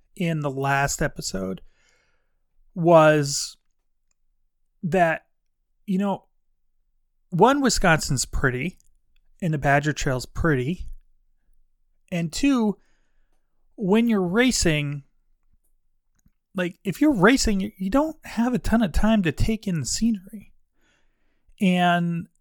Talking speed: 100 wpm